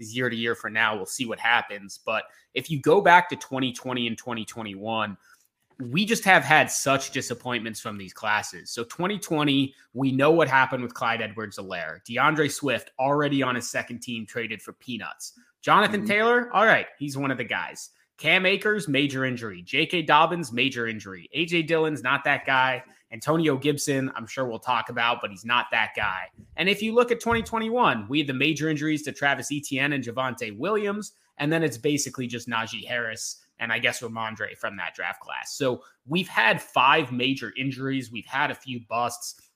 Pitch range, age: 115-150 Hz, 20-39